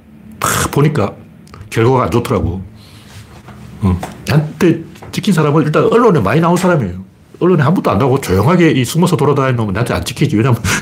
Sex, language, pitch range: male, Korean, 110-175 Hz